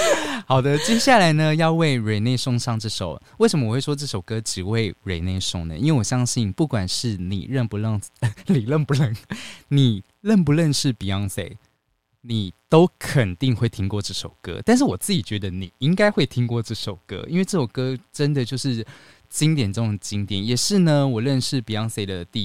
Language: Chinese